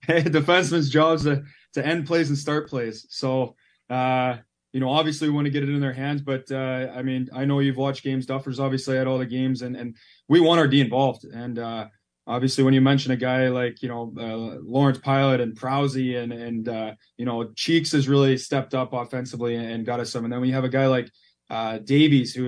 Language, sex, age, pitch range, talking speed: English, male, 20-39, 115-135 Hz, 235 wpm